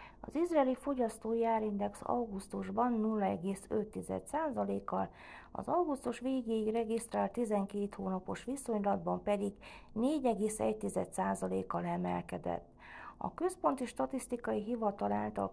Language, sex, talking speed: Hungarian, female, 75 wpm